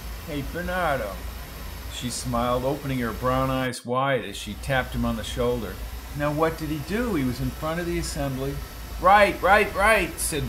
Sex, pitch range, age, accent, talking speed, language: male, 130-210 Hz, 50-69, American, 185 wpm, English